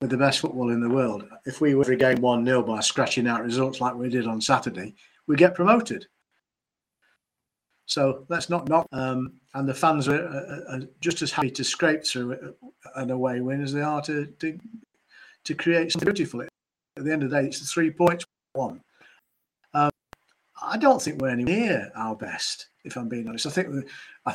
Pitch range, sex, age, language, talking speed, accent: 130-160 Hz, male, 40-59, English, 200 wpm, British